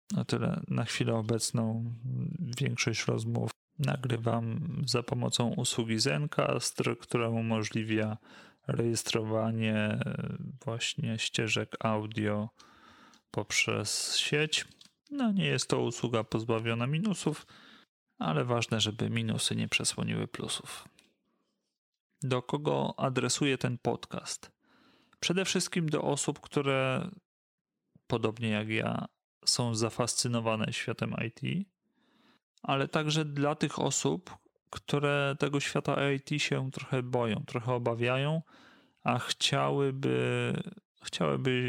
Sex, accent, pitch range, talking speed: male, native, 115-145 Hz, 100 wpm